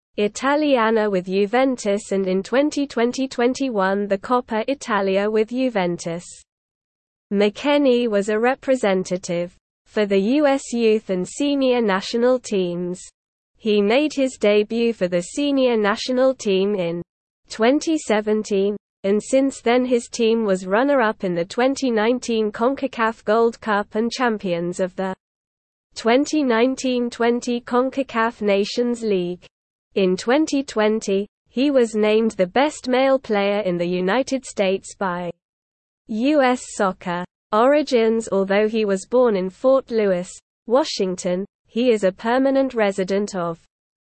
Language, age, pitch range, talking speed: English, 20-39, 195-250 Hz, 115 wpm